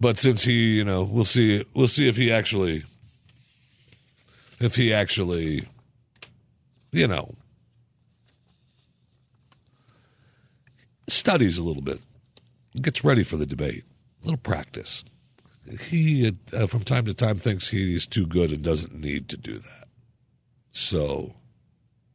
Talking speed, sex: 125 wpm, male